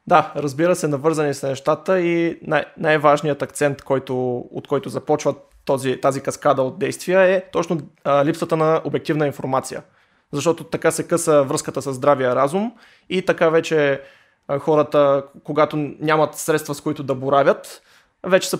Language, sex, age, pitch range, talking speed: Bulgarian, male, 20-39, 145-170 Hz, 140 wpm